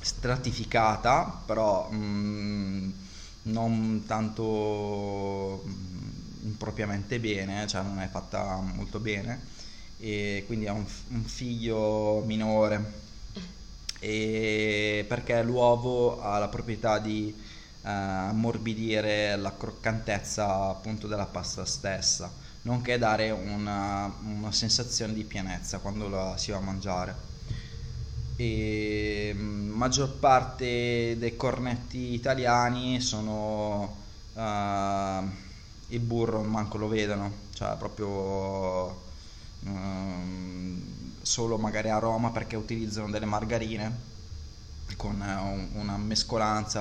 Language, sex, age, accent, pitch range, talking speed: Italian, male, 20-39, native, 95-110 Hz, 95 wpm